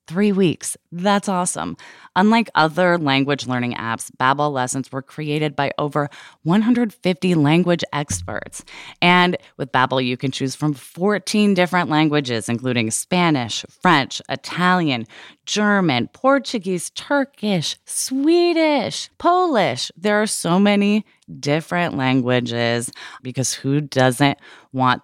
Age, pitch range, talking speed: 20-39, 130-185 Hz, 115 wpm